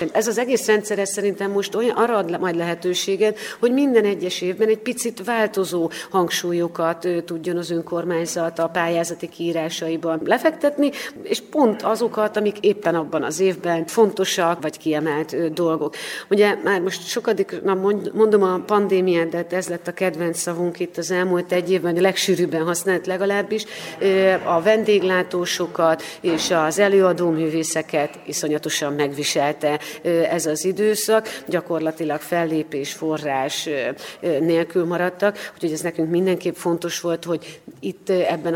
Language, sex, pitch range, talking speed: Hungarian, female, 165-195 Hz, 130 wpm